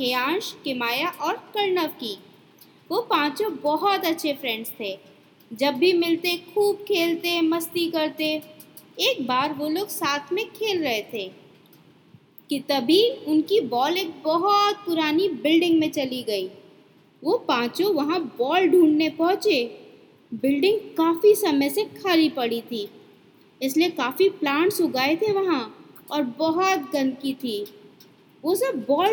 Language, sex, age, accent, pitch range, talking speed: Hindi, female, 20-39, native, 280-390 Hz, 135 wpm